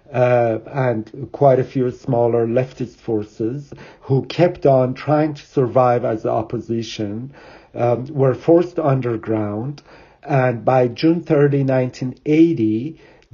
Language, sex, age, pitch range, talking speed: English, male, 50-69, 115-140 Hz, 115 wpm